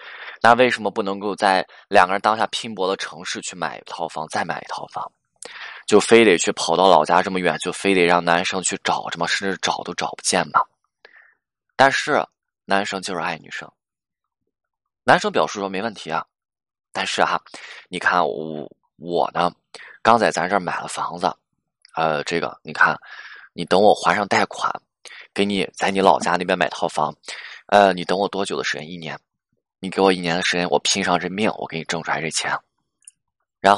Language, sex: Chinese, male